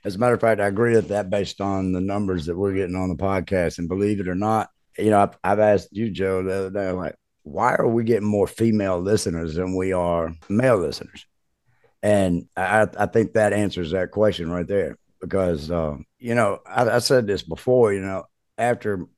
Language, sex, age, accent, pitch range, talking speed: English, male, 50-69, American, 95-115 Hz, 215 wpm